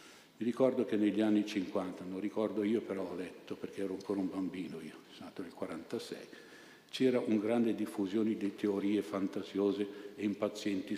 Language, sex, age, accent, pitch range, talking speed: Italian, male, 60-79, native, 105-140 Hz, 170 wpm